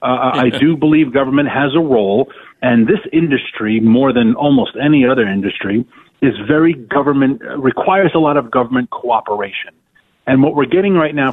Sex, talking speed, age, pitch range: male, 175 wpm, 40-59, 120-165 Hz